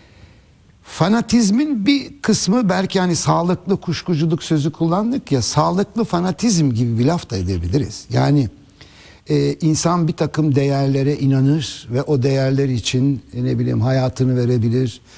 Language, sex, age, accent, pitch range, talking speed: Turkish, male, 60-79, native, 120-150 Hz, 125 wpm